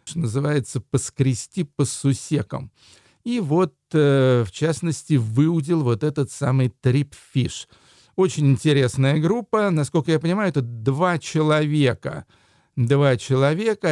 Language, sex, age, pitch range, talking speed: Russian, male, 50-69, 120-155 Hz, 110 wpm